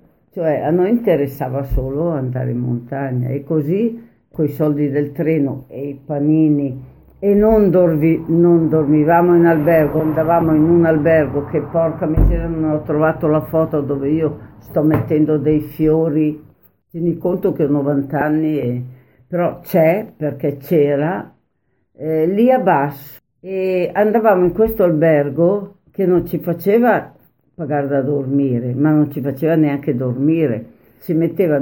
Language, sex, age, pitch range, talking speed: Italian, female, 60-79, 140-165 Hz, 150 wpm